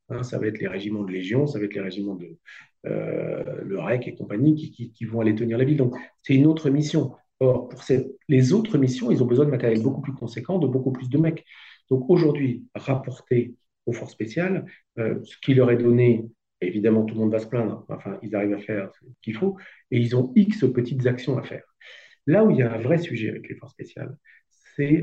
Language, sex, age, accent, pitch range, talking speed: French, male, 50-69, French, 115-145 Hz, 235 wpm